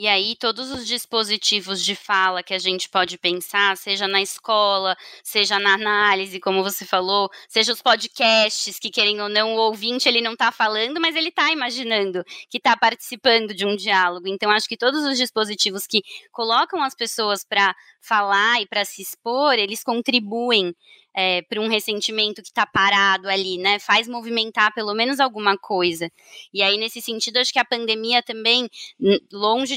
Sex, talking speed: female, 175 wpm